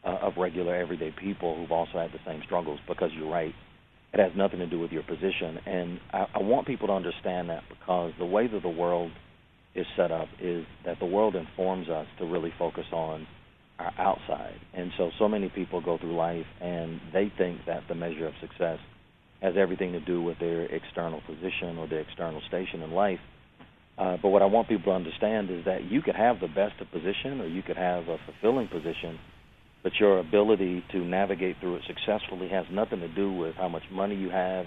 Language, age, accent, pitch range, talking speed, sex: English, 40-59, American, 85-95 Hz, 215 wpm, male